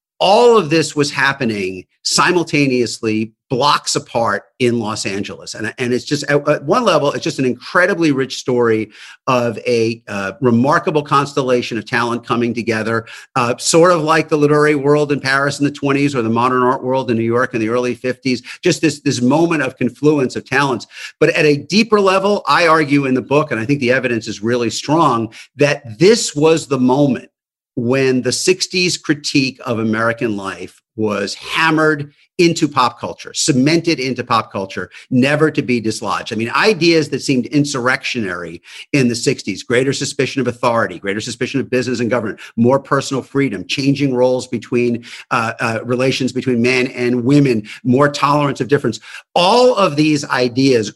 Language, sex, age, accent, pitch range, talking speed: English, male, 50-69, American, 120-145 Hz, 175 wpm